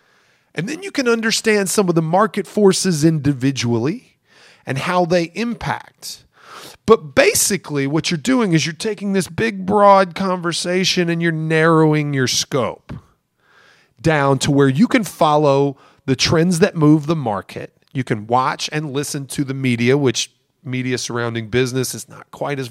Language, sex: English, male